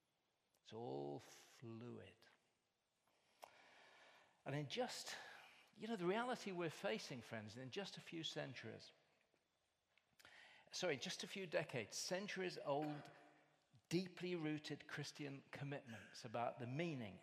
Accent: British